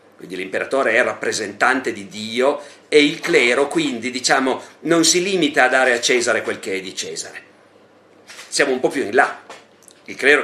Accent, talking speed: native, 180 wpm